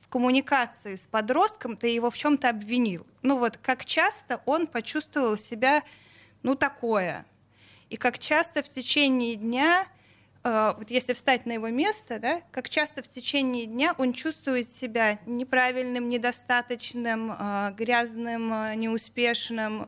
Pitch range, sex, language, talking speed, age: 225-275 Hz, female, Russian, 135 wpm, 20-39